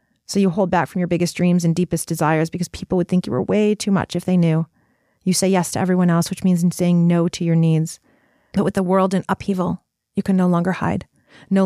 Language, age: English, 30-49